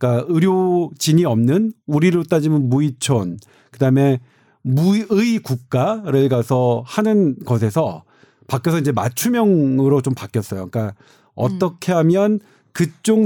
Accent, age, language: native, 40-59, Korean